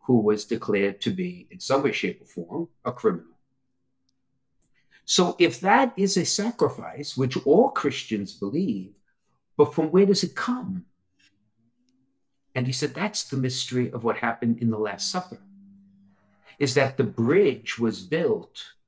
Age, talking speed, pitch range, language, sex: 50-69, 155 wpm, 115-165 Hz, English, male